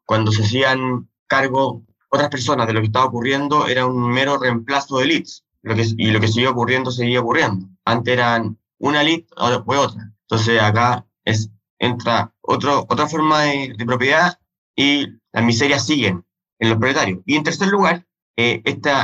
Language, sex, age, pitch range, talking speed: Spanish, male, 20-39, 110-135 Hz, 170 wpm